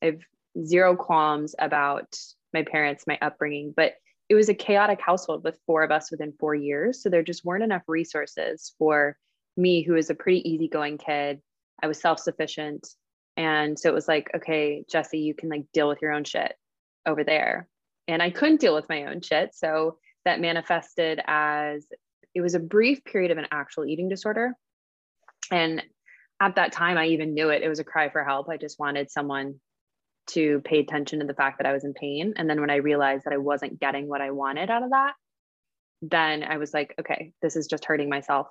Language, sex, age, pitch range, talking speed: English, female, 20-39, 145-170 Hz, 205 wpm